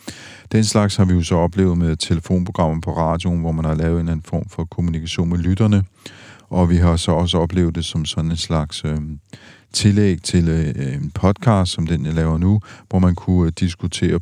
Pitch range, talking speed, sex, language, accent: 85-100 Hz, 205 wpm, male, Danish, native